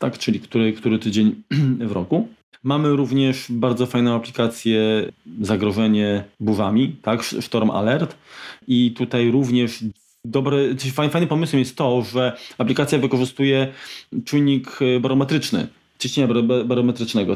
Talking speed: 105 wpm